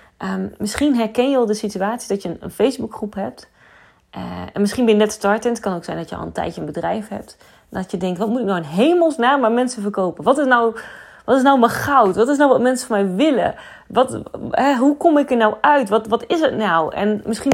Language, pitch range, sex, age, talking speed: Dutch, 195-260 Hz, female, 30-49, 255 wpm